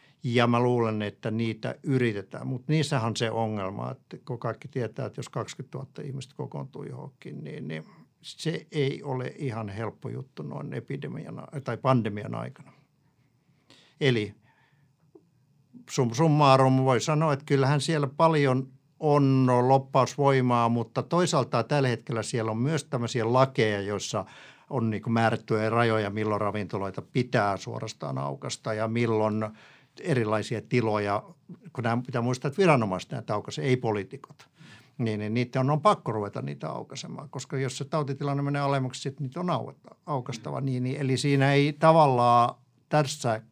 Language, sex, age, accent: Finnish, male, 50-69, native